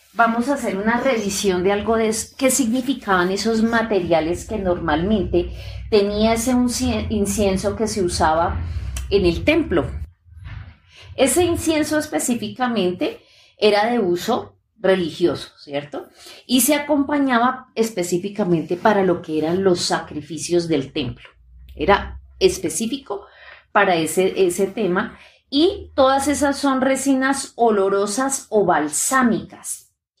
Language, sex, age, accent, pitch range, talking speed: Spanish, female, 30-49, Colombian, 175-240 Hz, 115 wpm